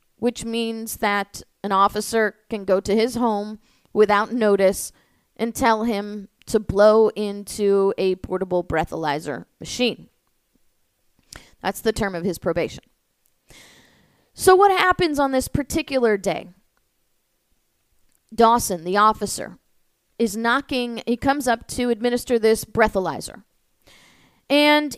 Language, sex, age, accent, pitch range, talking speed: English, female, 30-49, American, 210-270 Hz, 115 wpm